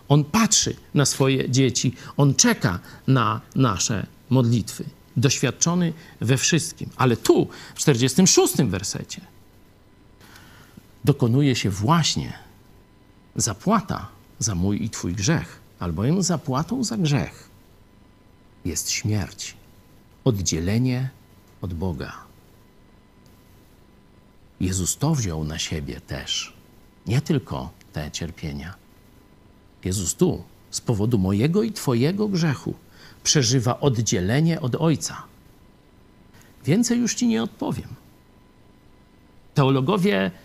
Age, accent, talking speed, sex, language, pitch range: 50-69, native, 95 wpm, male, Polish, 100-150 Hz